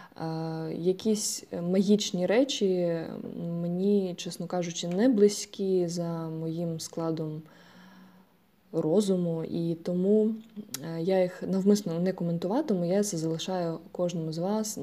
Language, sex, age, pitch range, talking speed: Ukrainian, female, 20-39, 170-200 Hz, 100 wpm